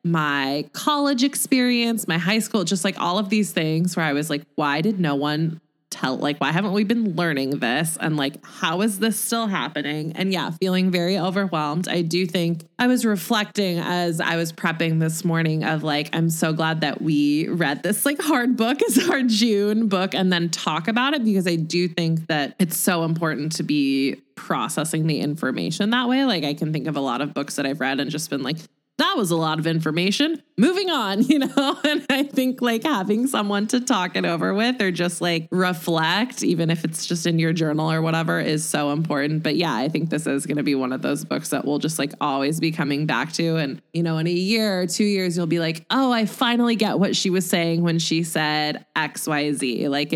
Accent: American